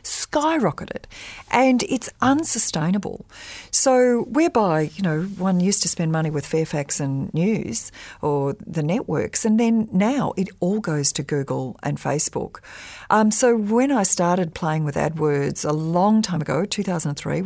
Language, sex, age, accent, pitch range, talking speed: English, female, 40-59, Australian, 150-200 Hz, 150 wpm